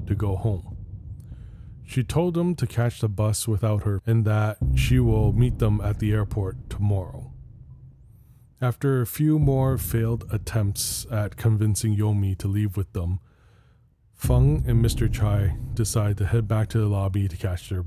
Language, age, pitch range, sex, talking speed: English, 20-39, 100-120 Hz, male, 165 wpm